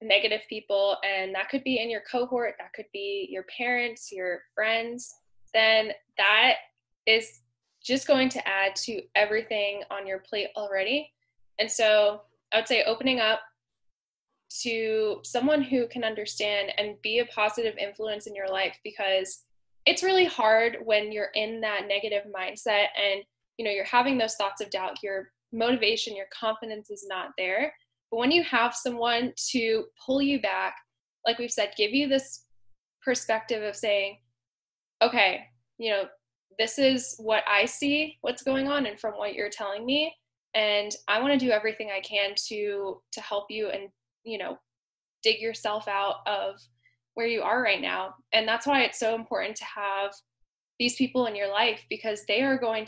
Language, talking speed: English, 175 wpm